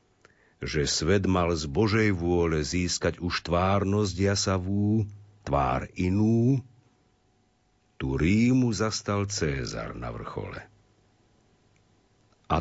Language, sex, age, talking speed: Slovak, male, 50-69, 90 wpm